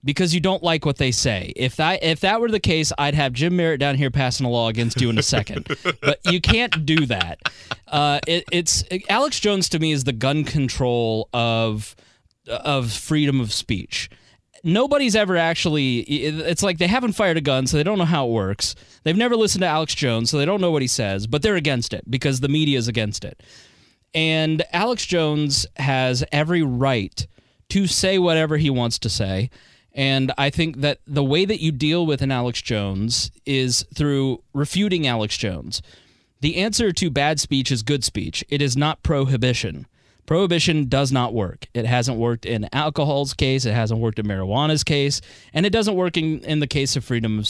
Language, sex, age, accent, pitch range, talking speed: English, male, 20-39, American, 120-160 Hz, 205 wpm